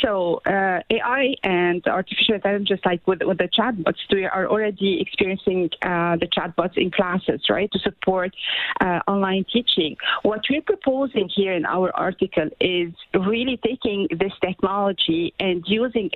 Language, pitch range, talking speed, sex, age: English, 180-225 Hz, 150 wpm, female, 40-59